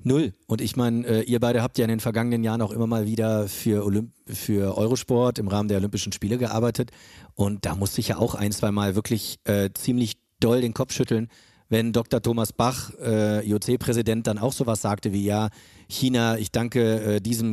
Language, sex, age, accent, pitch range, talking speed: German, male, 40-59, German, 110-130 Hz, 200 wpm